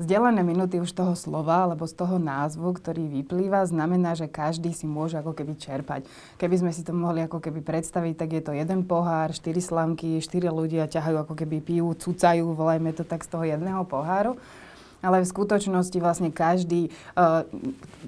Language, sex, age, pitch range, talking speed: Slovak, female, 20-39, 160-180 Hz, 180 wpm